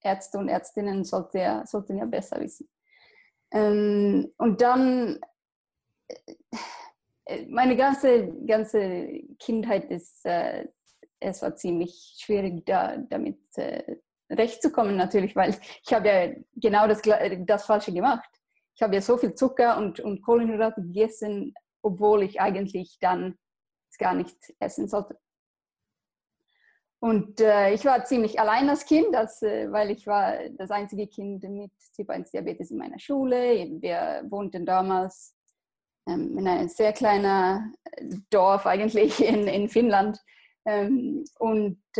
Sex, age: female, 20-39